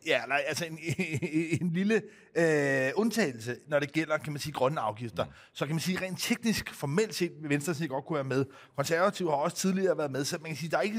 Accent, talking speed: native, 235 wpm